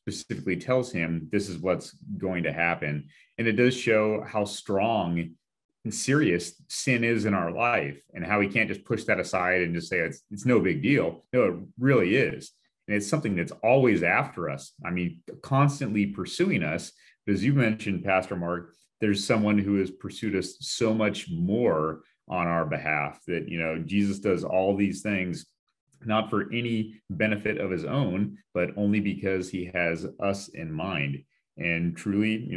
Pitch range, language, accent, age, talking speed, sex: 85-105 Hz, English, American, 30-49, 180 wpm, male